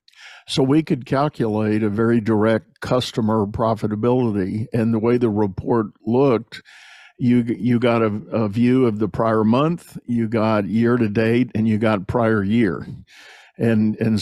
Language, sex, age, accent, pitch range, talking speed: English, male, 50-69, American, 110-120 Hz, 155 wpm